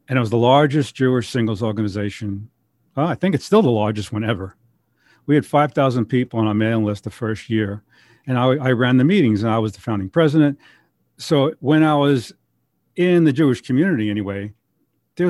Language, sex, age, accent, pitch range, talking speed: English, male, 50-69, American, 110-140 Hz, 190 wpm